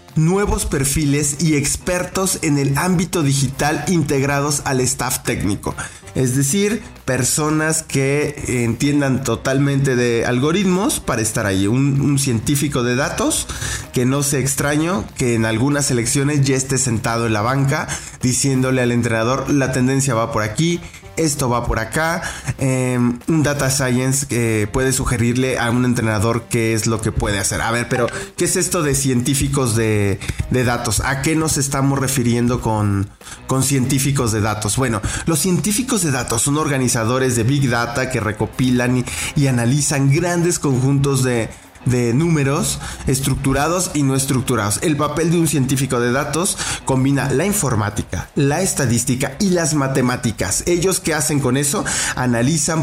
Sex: male